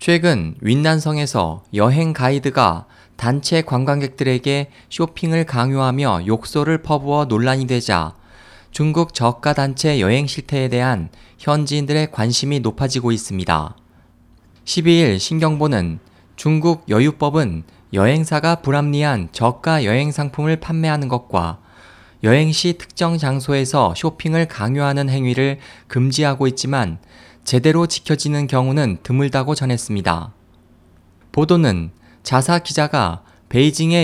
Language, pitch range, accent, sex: Korean, 105-150 Hz, native, male